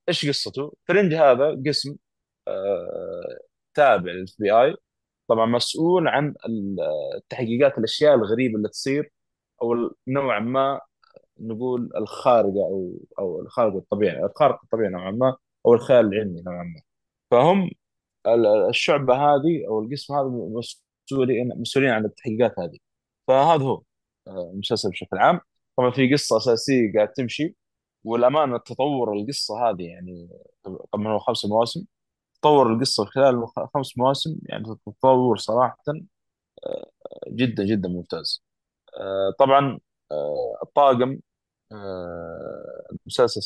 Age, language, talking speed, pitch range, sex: 20-39, Arabic, 110 wpm, 105-140 Hz, male